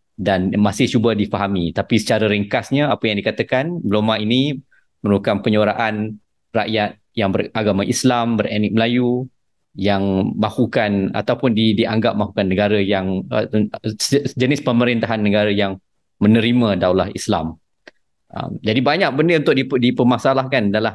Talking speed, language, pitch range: 120 wpm, Malay, 100-125 Hz